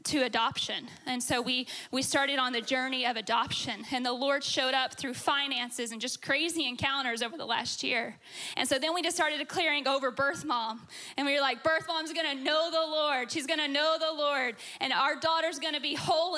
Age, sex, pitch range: 10-29, female, 255-315 Hz